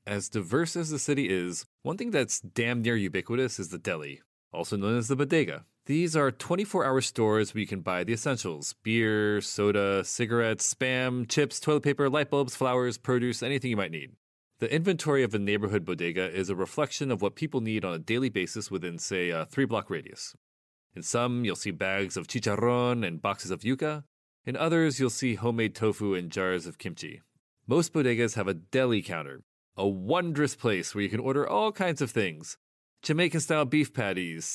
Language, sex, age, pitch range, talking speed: English, male, 30-49, 95-135 Hz, 190 wpm